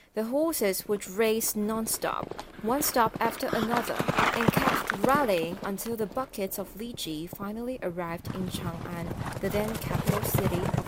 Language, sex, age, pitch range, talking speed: English, female, 20-39, 180-225 Hz, 145 wpm